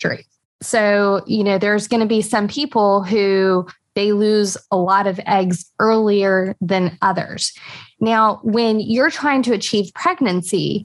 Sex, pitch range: female, 195-230 Hz